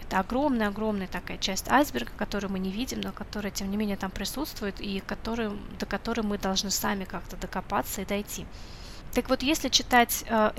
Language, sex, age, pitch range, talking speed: Russian, female, 20-39, 205-245 Hz, 175 wpm